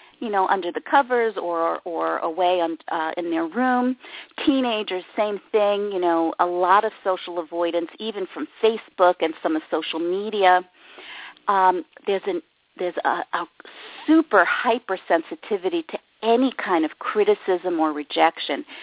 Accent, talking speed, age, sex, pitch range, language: American, 140 wpm, 50-69, female, 170-245 Hz, English